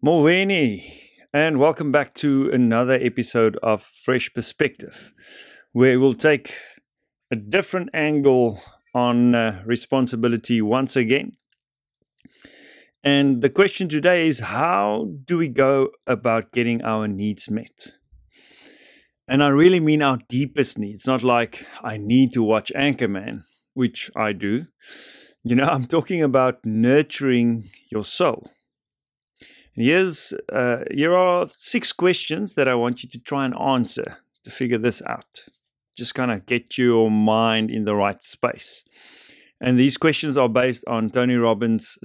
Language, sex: English, male